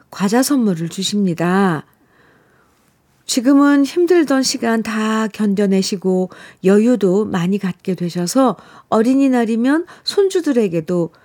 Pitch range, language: 190-240 Hz, Korean